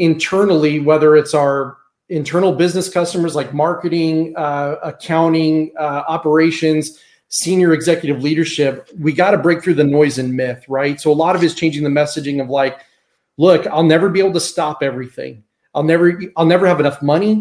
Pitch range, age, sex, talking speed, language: 145-165 Hz, 30-49, male, 175 wpm, English